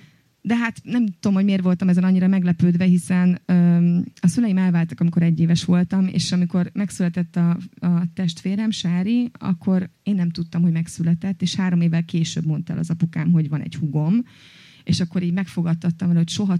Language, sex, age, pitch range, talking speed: Hungarian, female, 30-49, 170-195 Hz, 180 wpm